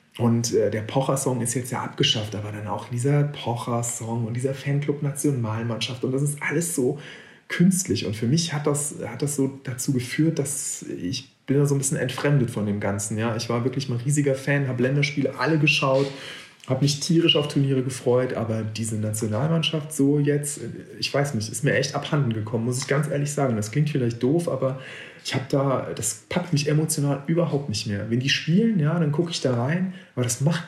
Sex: male